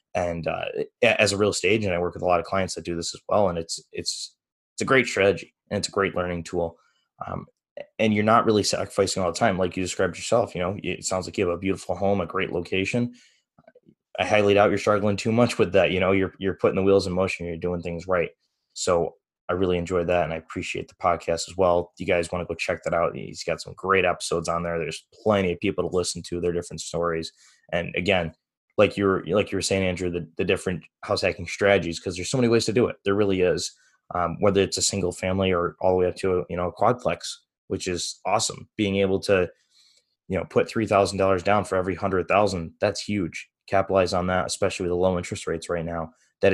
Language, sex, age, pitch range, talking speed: English, male, 20-39, 85-100 Hz, 245 wpm